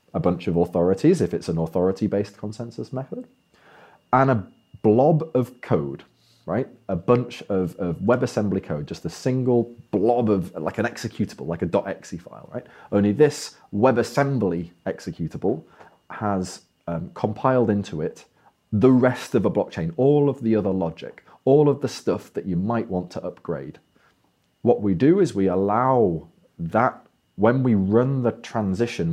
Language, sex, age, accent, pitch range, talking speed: English, male, 30-49, British, 100-125 Hz, 155 wpm